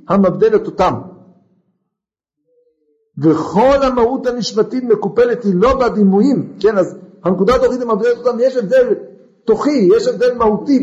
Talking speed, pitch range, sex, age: 110 wpm, 185-265 Hz, male, 50-69